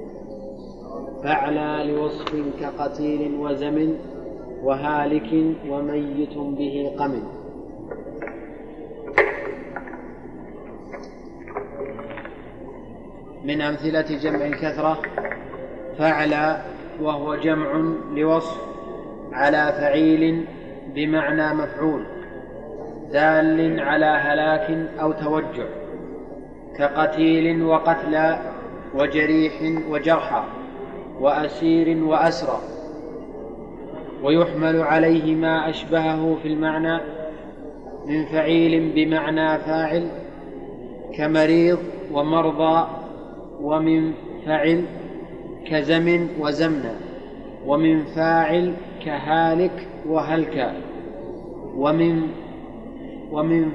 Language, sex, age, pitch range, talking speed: Arabic, male, 30-49, 150-160 Hz, 60 wpm